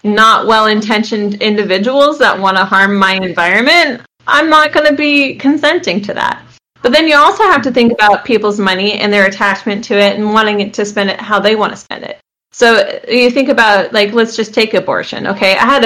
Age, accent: 20-39, American